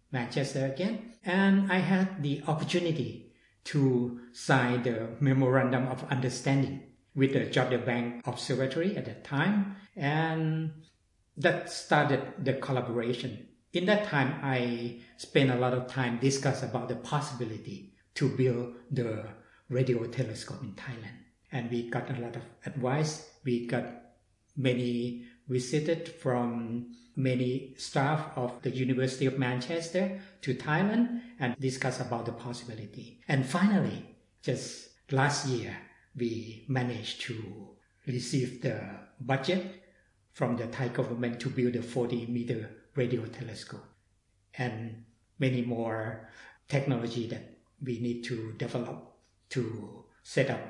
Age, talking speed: 60-79, 125 wpm